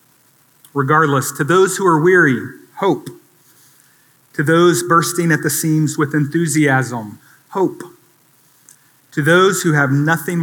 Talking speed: 120 wpm